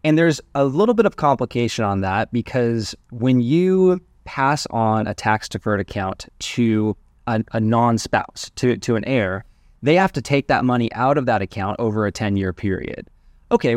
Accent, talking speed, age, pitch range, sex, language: American, 175 wpm, 20-39, 110-145 Hz, male, English